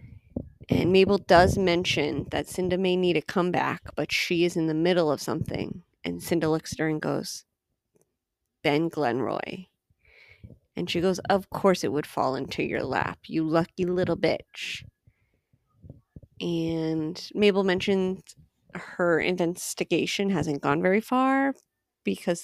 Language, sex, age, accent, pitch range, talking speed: English, female, 30-49, American, 165-195 Hz, 140 wpm